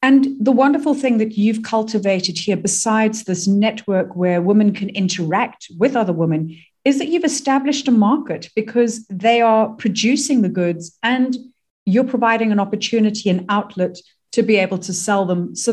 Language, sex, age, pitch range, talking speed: English, female, 40-59, 185-245 Hz, 170 wpm